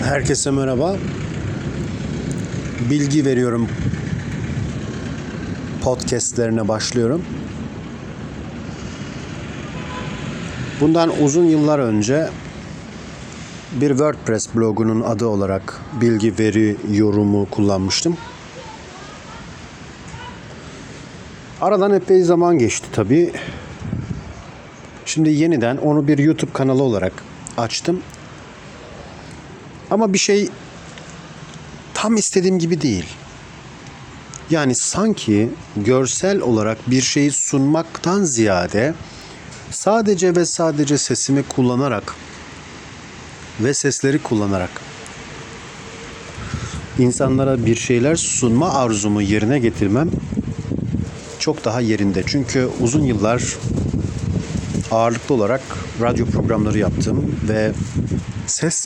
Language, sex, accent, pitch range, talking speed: Turkish, male, native, 110-150 Hz, 75 wpm